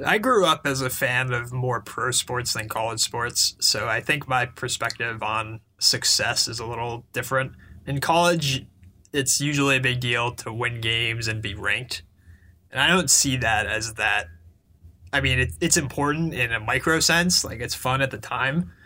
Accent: American